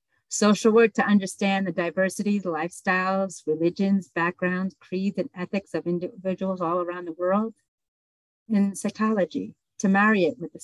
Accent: American